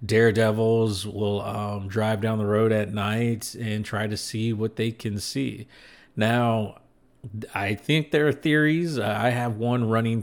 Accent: American